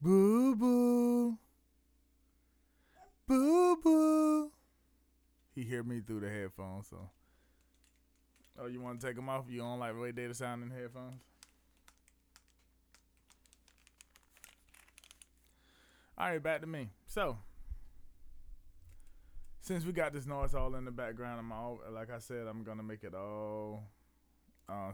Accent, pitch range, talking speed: American, 75-120 Hz, 125 wpm